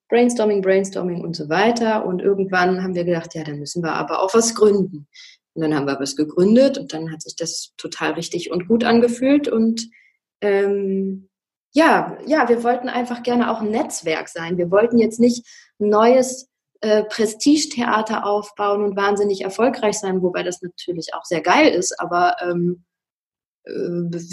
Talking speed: 170 wpm